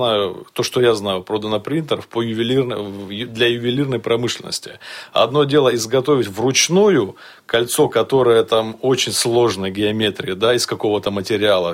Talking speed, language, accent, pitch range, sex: 125 wpm, Russian, native, 100-125 Hz, male